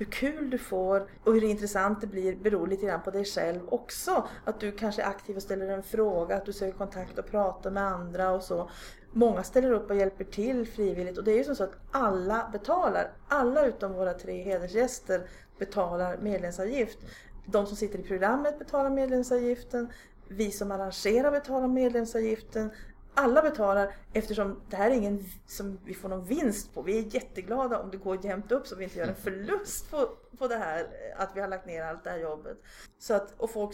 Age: 40-59